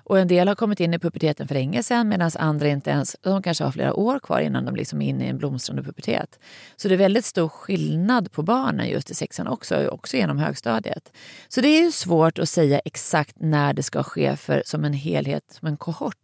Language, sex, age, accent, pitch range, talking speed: Swedish, female, 30-49, native, 150-210 Hz, 240 wpm